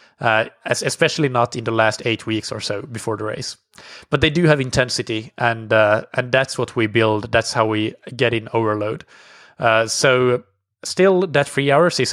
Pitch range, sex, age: 115-135 Hz, male, 20-39